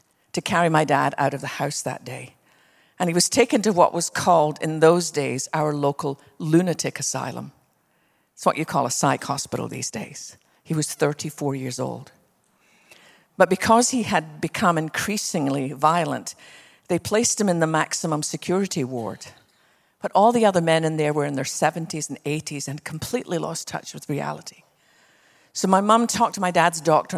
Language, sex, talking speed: English, female, 180 wpm